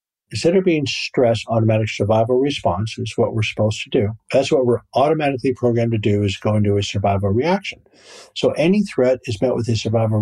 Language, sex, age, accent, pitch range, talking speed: English, male, 50-69, American, 110-130 Hz, 200 wpm